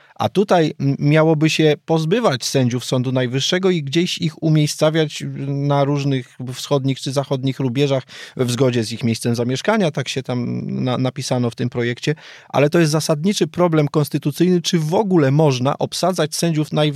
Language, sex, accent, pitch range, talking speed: Polish, male, native, 130-155 Hz, 150 wpm